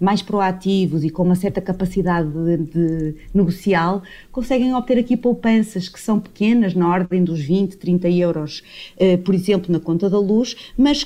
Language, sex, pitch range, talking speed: English, female, 175-230 Hz, 170 wpm